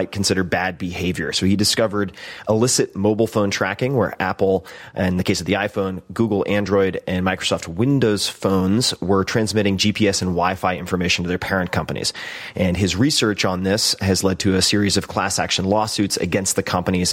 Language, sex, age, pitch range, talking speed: English, male, 30-49, 90-105 Hz, 180 wpm